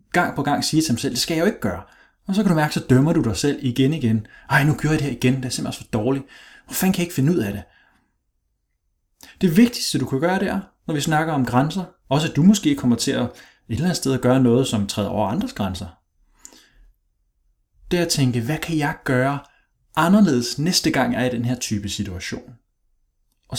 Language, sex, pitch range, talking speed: Danish, male, 120-165 Hz, 240 wpm